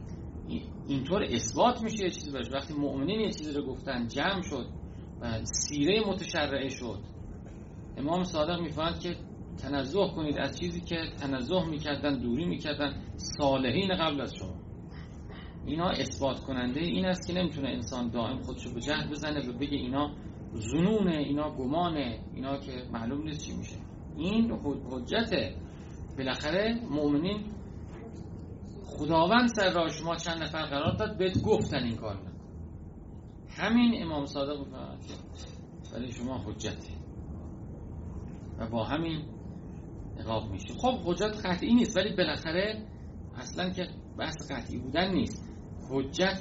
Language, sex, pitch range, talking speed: Persian, male, 95-160 Hz, 130 wpm